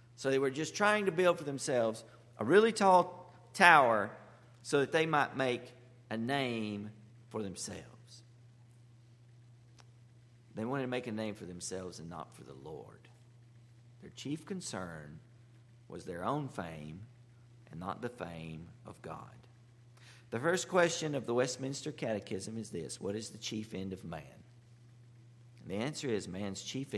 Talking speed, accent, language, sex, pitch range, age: 155 wpm, American, English, male, 115-140 Hz, 50-69